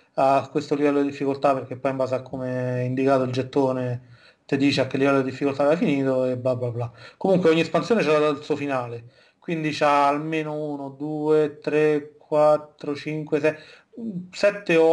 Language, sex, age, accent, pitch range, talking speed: Italian, male, 30-49, native, 135-150 Hz, 185 wpm